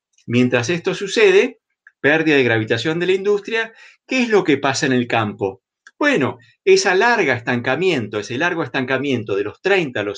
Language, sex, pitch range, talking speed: Spanish, male, 125-200 Hz, 170 wpm